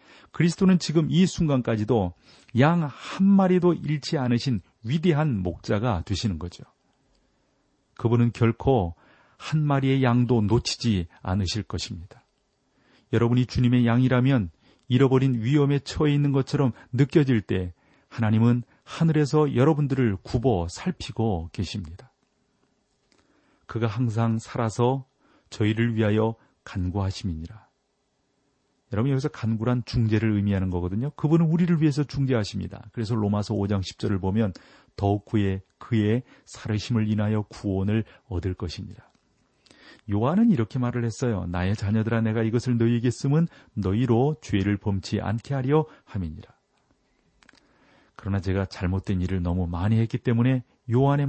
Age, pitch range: 40-59, 105-135 Hz